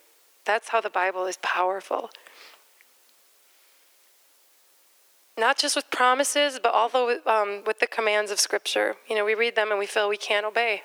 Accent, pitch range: American, 200-240 Hz